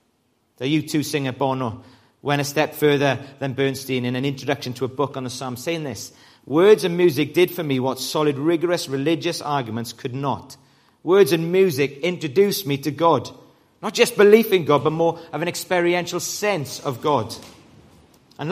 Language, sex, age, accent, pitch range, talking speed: English, male, 40-59, British, 130-170 Hz, 180 wpm